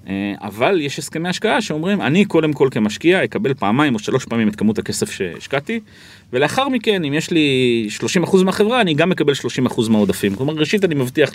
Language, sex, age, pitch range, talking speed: Hebrew, male, 30-49, 105-155 Hz, 180 wpm